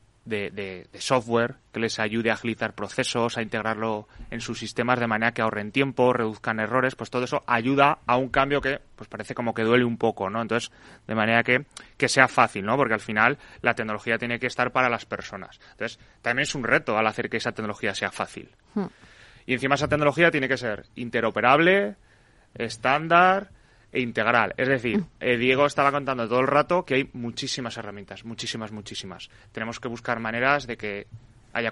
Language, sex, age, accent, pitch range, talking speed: Spanish, male, 30-49, Spanish, 110-125 Hz, 190 wpm